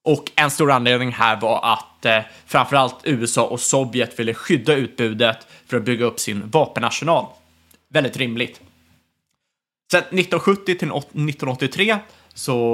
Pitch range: 115-150 Hz